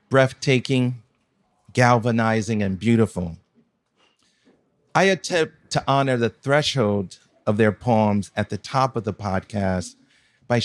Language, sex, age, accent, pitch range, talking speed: English, male, 50-69, American, 110-140 Hz, 115 wpm